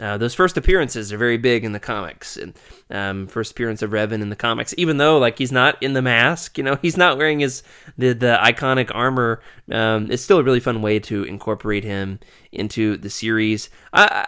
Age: 20-39